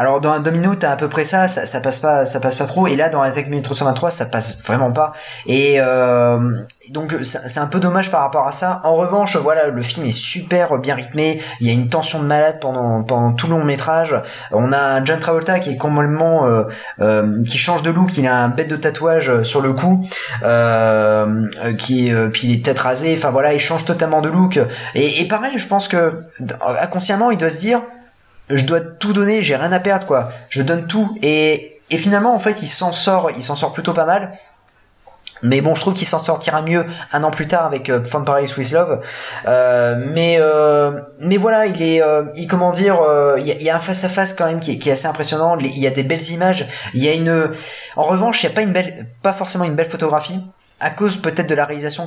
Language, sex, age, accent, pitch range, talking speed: French, male, 20-39, French, 130-170 Hz, 245 wpm